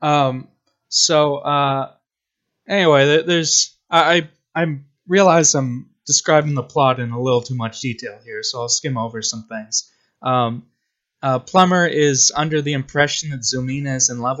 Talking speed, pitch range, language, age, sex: 155 wpm, 115-145 Hz, English, 20-39, male